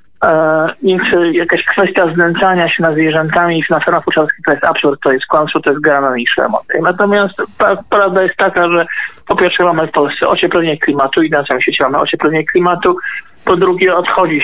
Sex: male